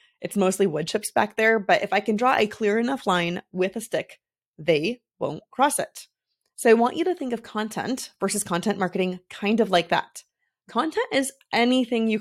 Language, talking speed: English, 200 wpm